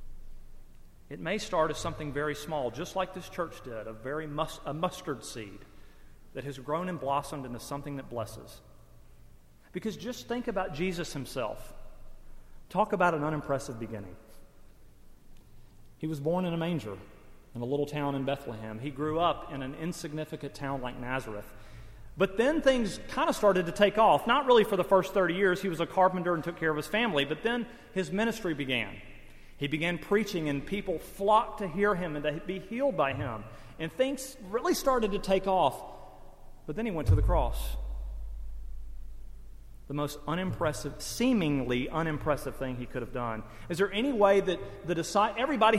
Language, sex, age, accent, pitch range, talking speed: English, male, 40-59, American, 130-195 Hz, 180 wpm